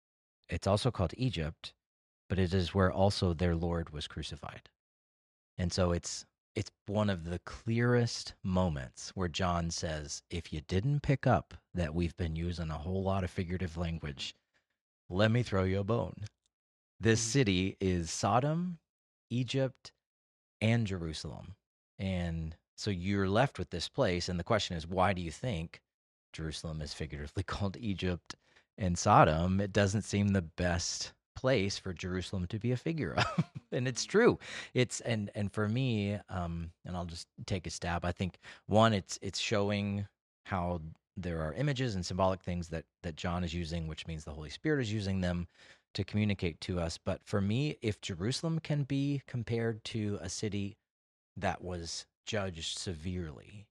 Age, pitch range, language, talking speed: 30-49, 85-105 Hz, English, 165 wpm